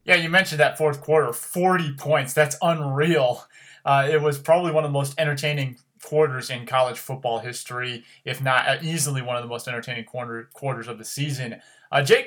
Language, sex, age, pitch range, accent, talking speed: English, male, 20-39, 125-155 Hz, American, 185 wpm